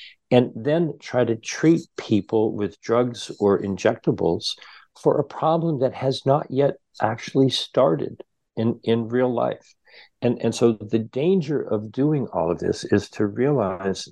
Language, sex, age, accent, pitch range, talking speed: English, male, 50-69, American, 110-145 Hz, 155 wpm